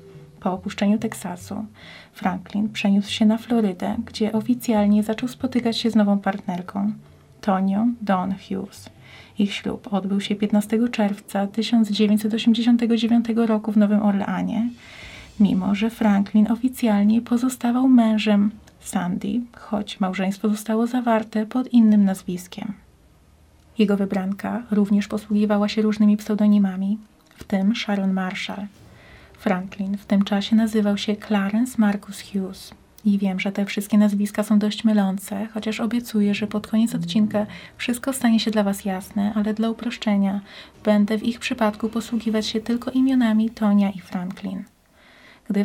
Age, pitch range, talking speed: 30-49, 200-225 Hz, 130 wpm